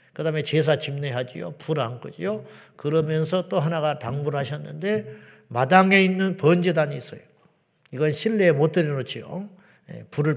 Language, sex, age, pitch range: Korean, male, 50-69, 155-220 Hz